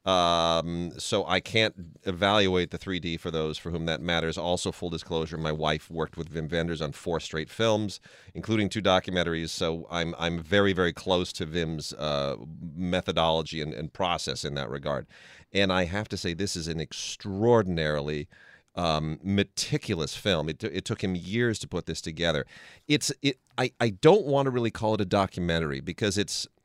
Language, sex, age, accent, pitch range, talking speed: English, male, 40-59, American, 80-100 Hz, 180 wpm